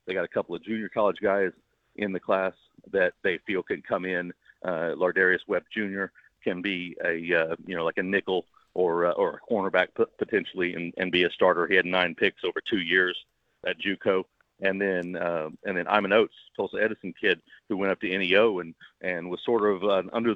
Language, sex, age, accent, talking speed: English, male, 40-59, American, 215 wpm